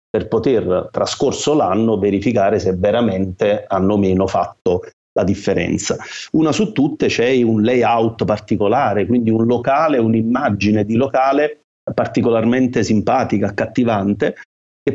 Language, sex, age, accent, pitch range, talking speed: Italian, male, 40-59, native, 105-135 Hz, 120 wpm